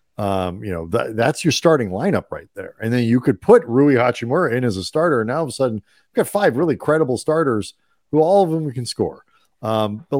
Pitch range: 105-135 Hz